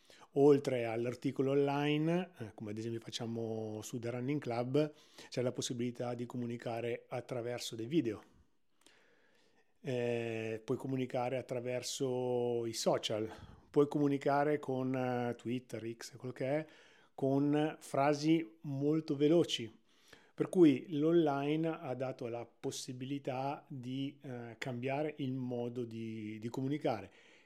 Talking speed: 115 wpm